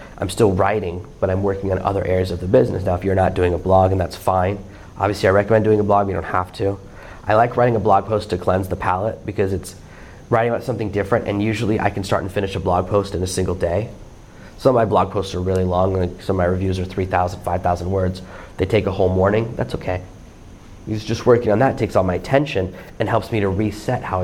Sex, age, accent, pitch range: male, 30-49, American, 95-115 Hz